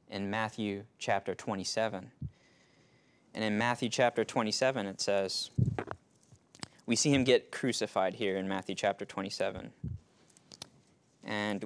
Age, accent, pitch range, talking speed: 20-39, American, 100-120 Hz, 115 wpm